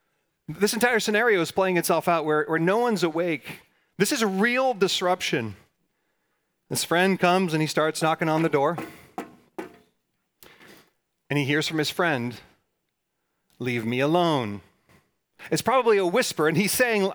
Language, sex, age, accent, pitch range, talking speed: English, male, 40-59, American, 145-195 Hz, 150 wpm